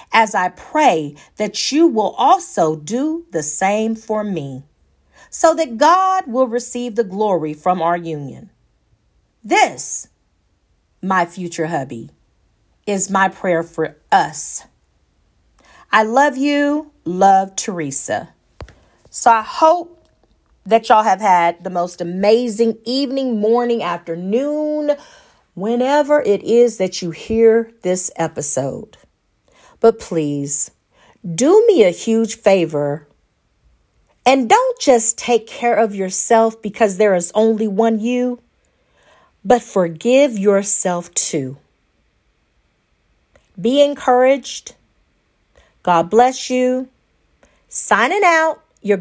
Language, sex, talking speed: English, female, 110 wpm